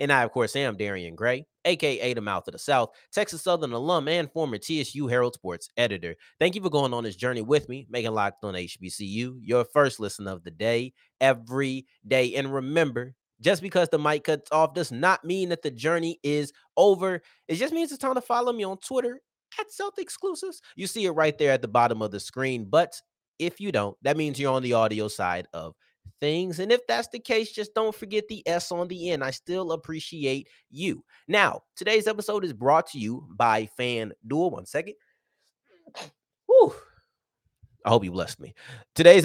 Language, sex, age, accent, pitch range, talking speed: English, male, 30-49, American, 115-175 Hz, 200 wpm